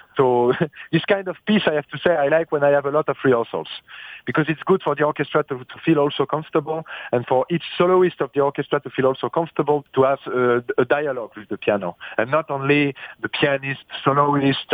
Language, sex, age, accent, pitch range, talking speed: English, male, 40-59, French, 135-165 Hz, 220 wpm